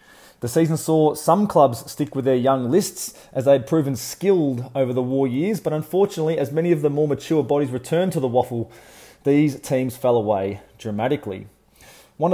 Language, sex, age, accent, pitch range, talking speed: English, male, 30-49, Australian, 130-160 Hz, 185 wpm